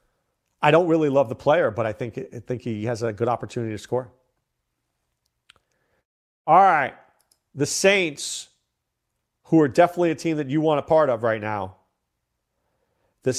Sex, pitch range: male, 115-165 Hz